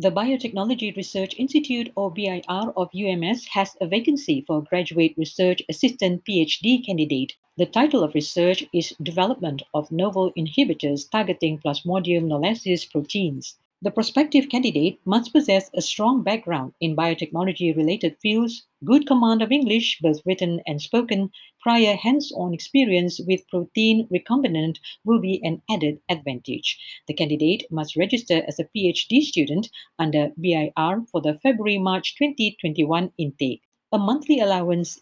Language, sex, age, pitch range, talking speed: Malay, female, 50-69, 160-225 Hz, 135 wpm